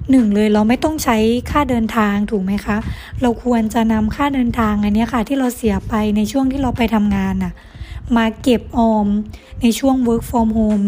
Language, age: Thai, 20-39